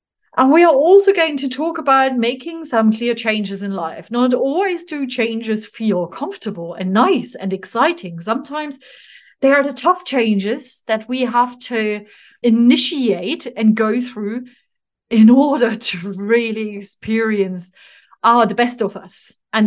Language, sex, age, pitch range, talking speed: English, female, 30-49, 200-255 Hz, 150 wpm